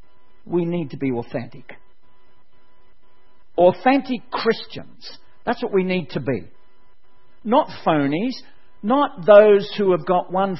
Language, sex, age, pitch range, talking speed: English, male, 60-79, 125-200 Hz, 120 wpm